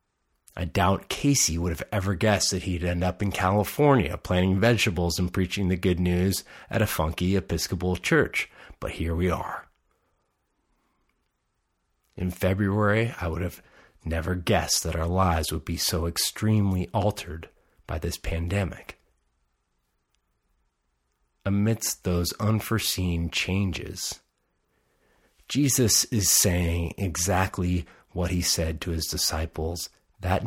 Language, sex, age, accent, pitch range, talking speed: English, male, 30-49, American, 65-95 Hz, 120 wpm